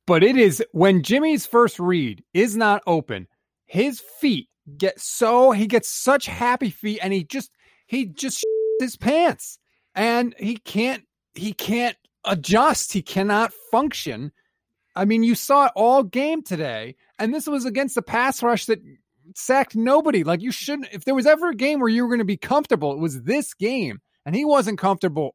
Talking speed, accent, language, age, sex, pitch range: 180 wpm, American, English, 30-49, male, 170-245 Hz